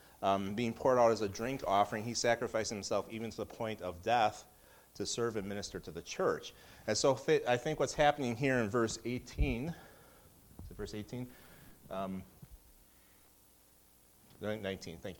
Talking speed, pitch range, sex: 150 wpm, 95-125 Hz, male